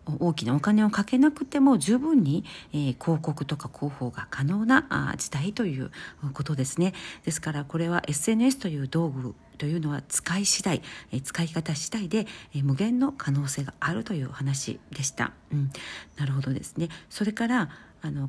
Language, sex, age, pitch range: Japanese, female, 40-59, 145-225 Hz